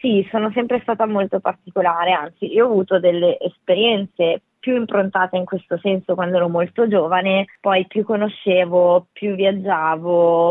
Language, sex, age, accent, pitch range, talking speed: Italian, female, 20-39, native, 175-210 Hz, 150 wpm